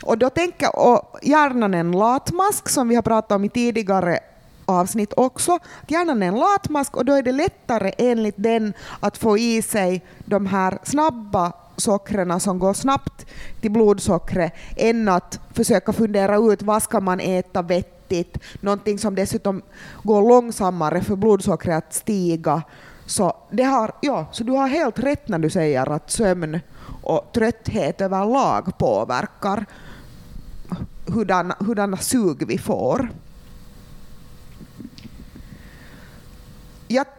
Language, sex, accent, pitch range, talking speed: Swedish, female, Finnish, 175-230 Hz, 135 wpm